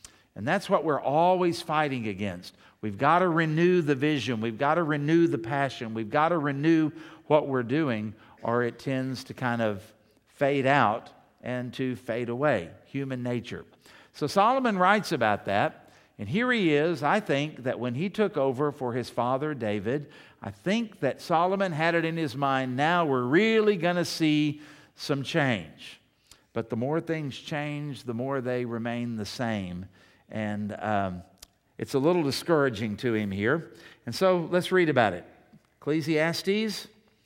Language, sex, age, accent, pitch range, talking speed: English, male, 50-69, American, 120-165 Hz, 165 wpm